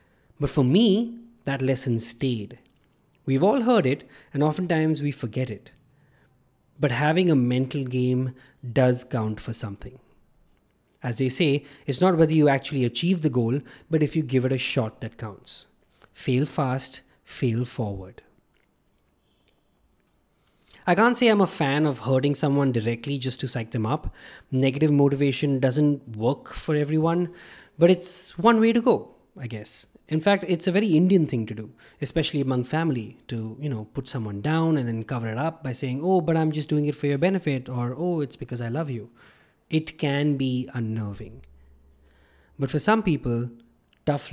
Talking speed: 170 wpm